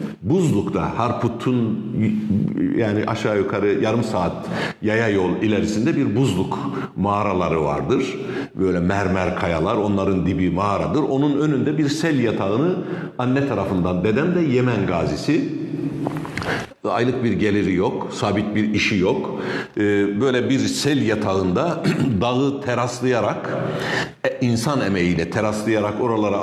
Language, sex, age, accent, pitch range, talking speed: Turkish, male, 60-79, native, 100-145 Hz, 110 wpm